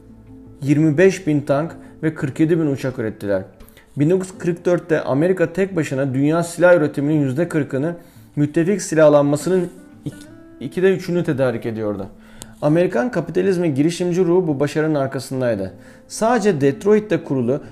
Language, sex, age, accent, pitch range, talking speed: Turkish, male, 40-59, native, 130-175 Hz, 110 wpm